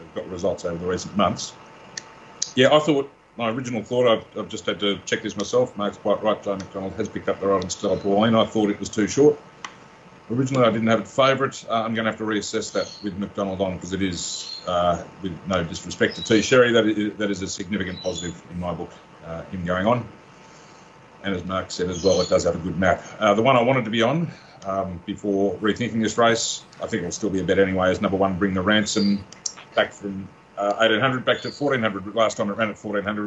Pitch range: 95-115 Hz